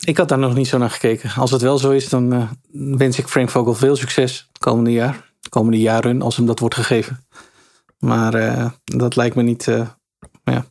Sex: male